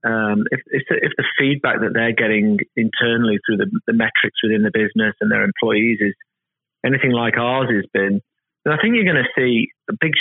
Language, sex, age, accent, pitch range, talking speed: English, male, 30-49, British, 115-140 Hz, 200 wpm